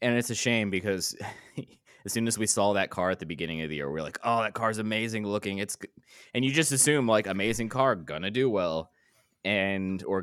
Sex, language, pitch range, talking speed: male, English, 80-105 Hz, 240 wpm